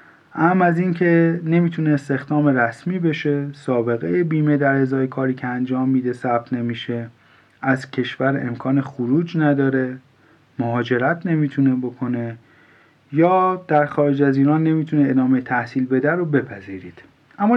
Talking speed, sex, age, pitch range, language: 130 wpm, male, 30-49, 130-160 Hz, Persian